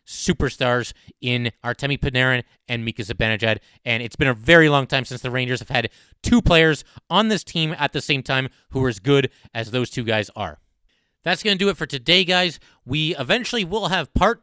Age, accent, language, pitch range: 30-49, American, English, 130-165 Hz